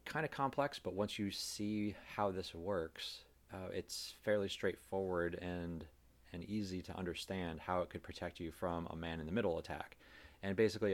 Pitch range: 85-100 Hz